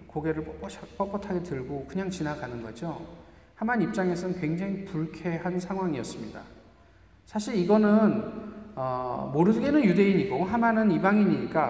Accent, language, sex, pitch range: native, Korean, male, 165-210 Hz